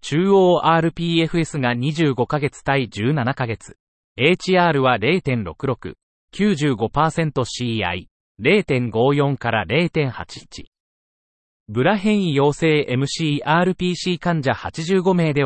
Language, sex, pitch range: Japanese, male, 115-165 Hz